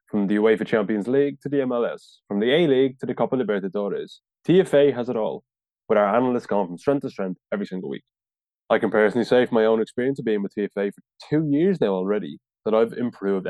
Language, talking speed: English, 220 wpm